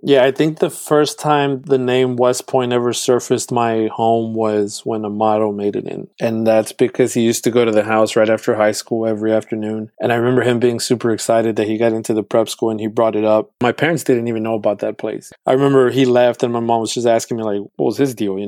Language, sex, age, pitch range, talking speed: English, male, 20-39, 110-125 Hz, 265 wpm